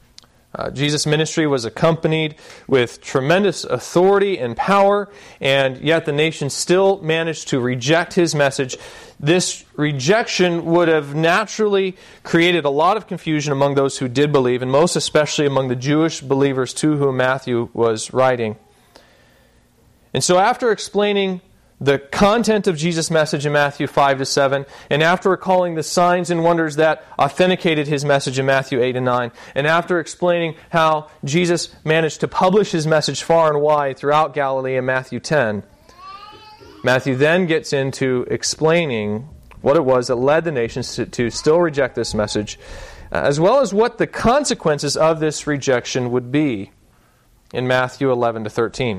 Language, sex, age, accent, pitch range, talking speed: English, male, 30-49, American, 130-175 Hz, 155 wpm